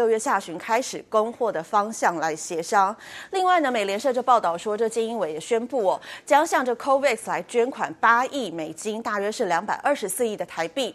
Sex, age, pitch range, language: female, 30-49, 185-265 Hz, Chinese